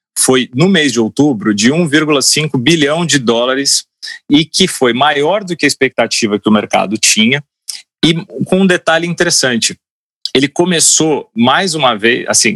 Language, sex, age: Portuguese, male, 30-49